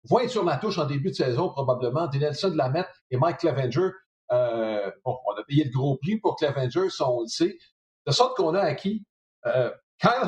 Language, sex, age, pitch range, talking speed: French, male, 50-69, 135-185 Hz, 210 wpm